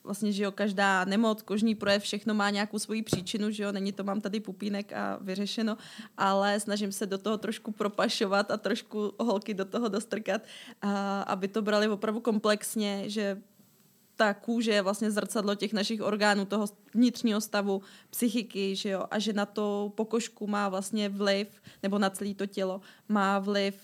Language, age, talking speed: Czech, 20-39, 175 wpm